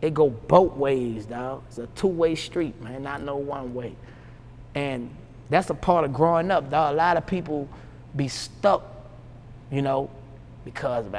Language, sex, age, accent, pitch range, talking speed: English, male, 20-39, American, 120-155 Hz, 170 wpm